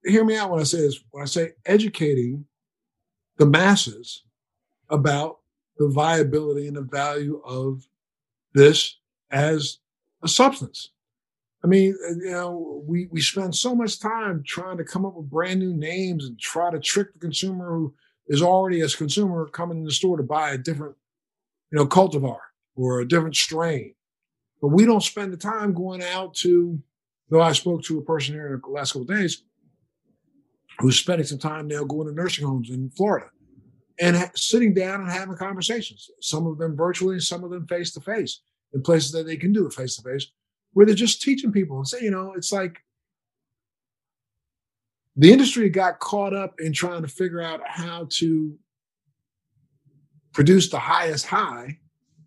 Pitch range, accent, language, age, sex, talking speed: 145-185 Hz, American, English, 50-69, male, 170 wpm